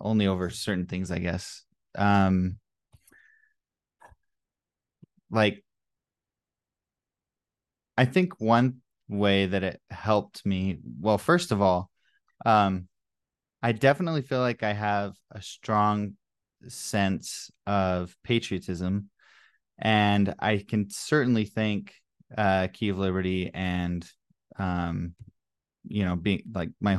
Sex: male